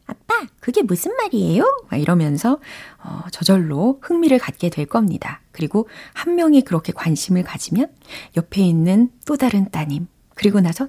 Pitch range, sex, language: 170-275 Hz, female, Korean